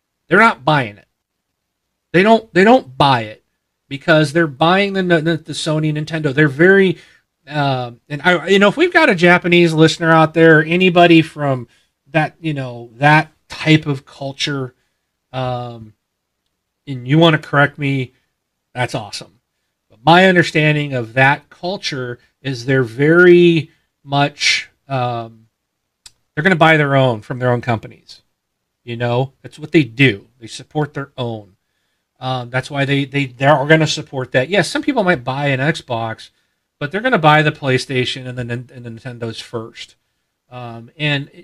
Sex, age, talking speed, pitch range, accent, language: male, 40-59, 165 wpm, 135-175 Hz, American, English